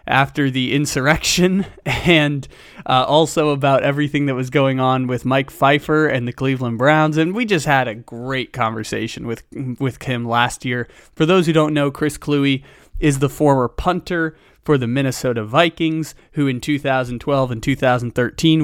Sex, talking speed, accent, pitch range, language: male, 165 wpm, American, 120-150 Hz, English